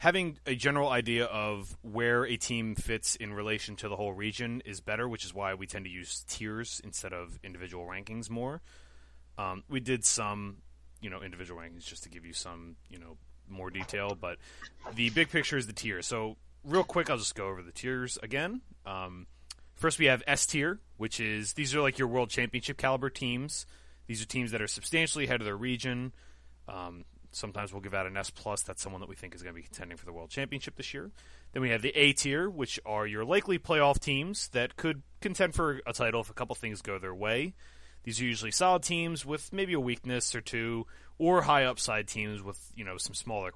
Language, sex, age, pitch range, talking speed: English, male, 30-49, 95-135 Hz, 220 wpm